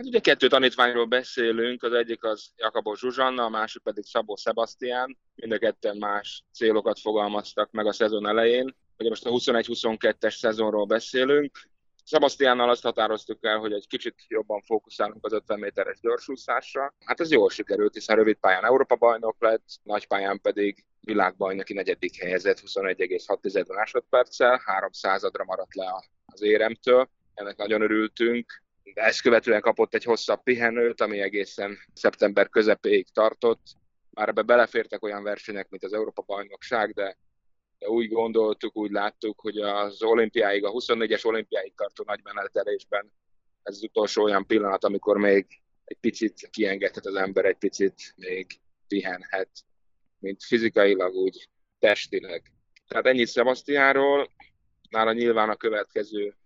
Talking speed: 140 wpm